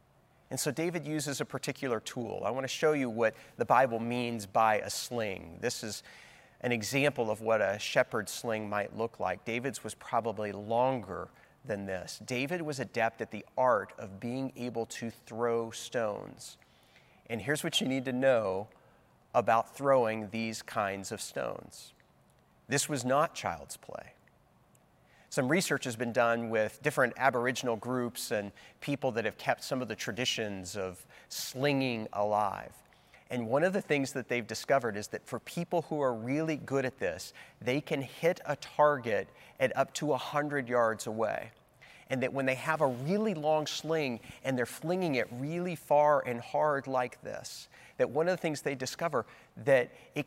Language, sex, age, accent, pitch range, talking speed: English, male, 30-49, American, 115-150 Hz, 175 wpm